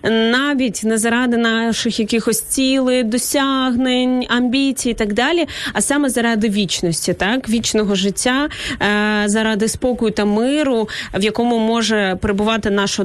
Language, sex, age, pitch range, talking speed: Ukrainian, female, 20-39, 220-255 Hz, 125 wpm